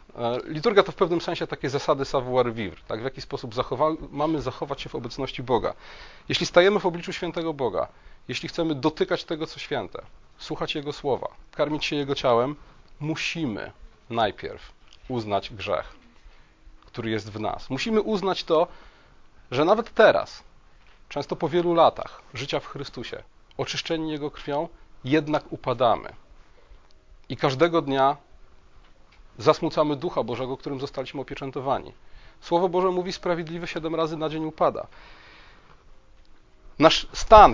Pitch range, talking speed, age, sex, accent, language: 135-170 Hz, 135 wpm, 30-49, male, native, Polish